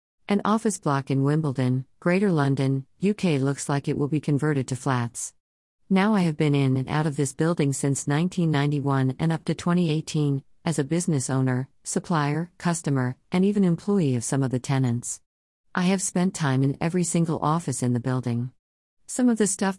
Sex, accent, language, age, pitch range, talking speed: female, American, English, 50-69, 130-165 Hz, 185 wpm